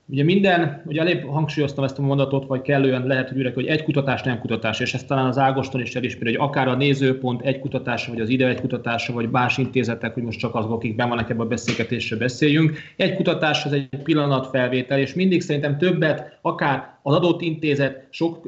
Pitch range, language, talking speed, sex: 130-150 Hz, Hungarian, 205 wpm, male